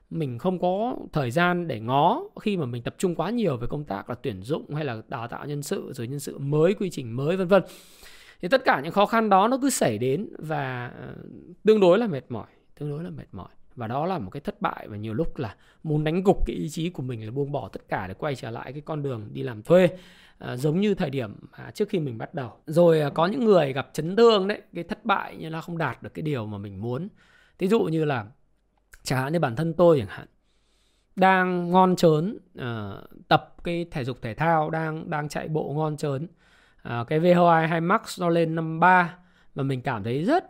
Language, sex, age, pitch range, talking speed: Vietnamese, male, 20-39, 130-175 Hz, 235 wpm